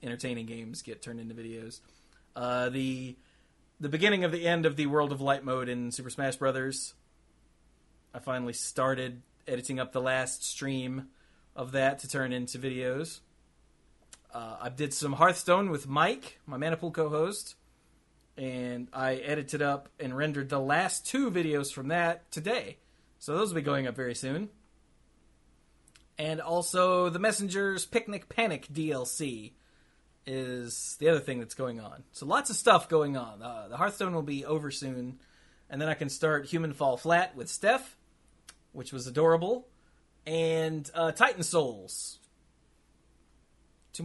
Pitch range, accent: 125-160 Hz, American